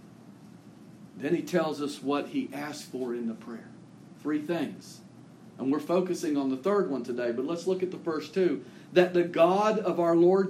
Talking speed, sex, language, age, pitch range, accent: 195 wpm, male, English, 50-69, 170-220 Hz, American